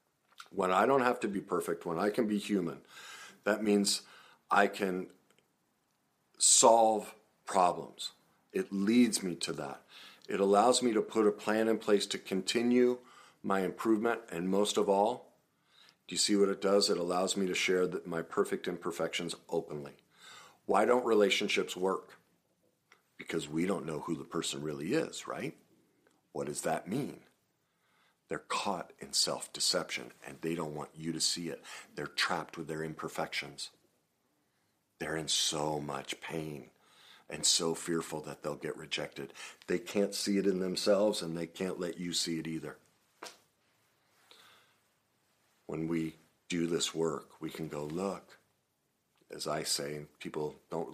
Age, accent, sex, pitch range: 50-69, American, male, 80-100 Hz